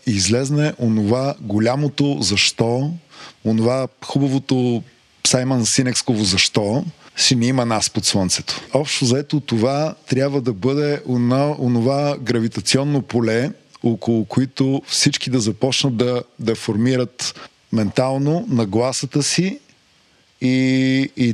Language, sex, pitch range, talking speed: Bulgarian, male, 120-145 Hz, 105 wpm